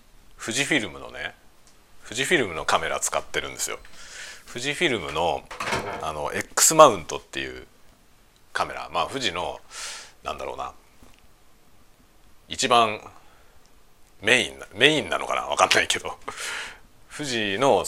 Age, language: 40-59, Japanese